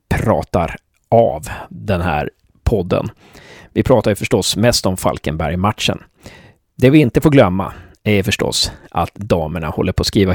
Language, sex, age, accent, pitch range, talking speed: Swedish, male, 30-49, native, 90-110 Hz, 145 wpm